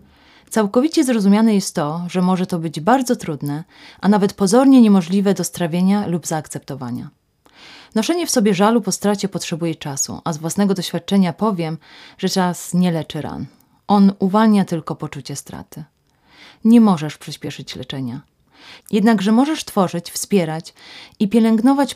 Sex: female